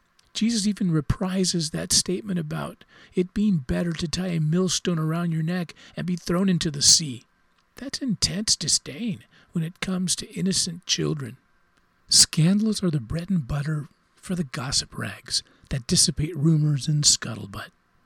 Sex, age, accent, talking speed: male, 50-69, American, 155 wpm